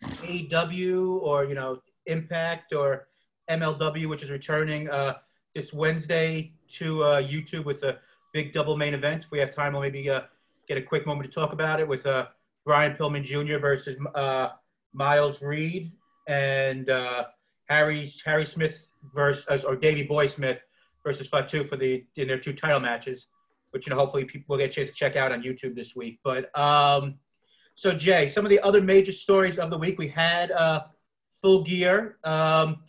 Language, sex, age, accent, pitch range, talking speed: English, male, 30-49, American, 145-185 Hz, 180 wpm